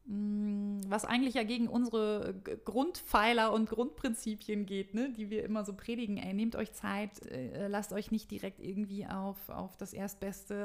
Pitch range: 200-235 Hz